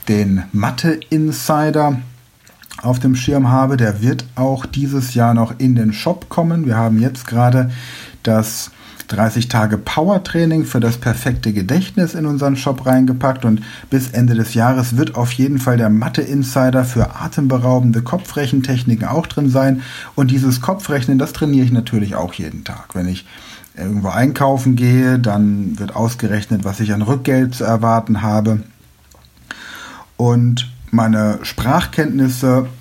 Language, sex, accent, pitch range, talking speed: German, male, German, 110-130 Hz, 135 wpm